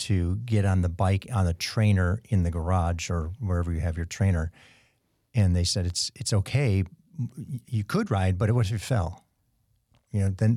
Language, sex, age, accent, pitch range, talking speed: English, male, 50-69, American, 90-110 Hz, 200 wpm